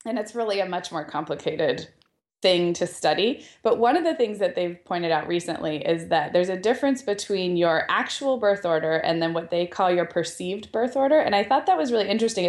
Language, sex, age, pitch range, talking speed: English, female, 20-39, 170-200 Hz, 220 wpm